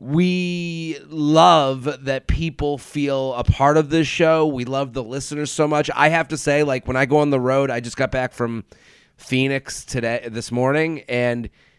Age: 30-49